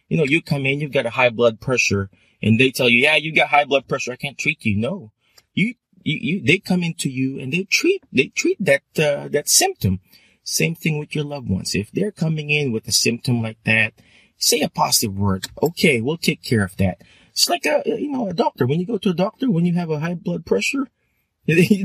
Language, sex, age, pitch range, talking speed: English, male, 20-39, 110-165 Hz, 240 wpm